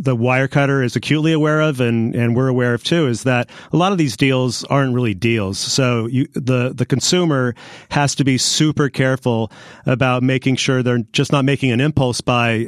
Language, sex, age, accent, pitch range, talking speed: English, male, 40-59, American, 120-140 Hz, 200 wpm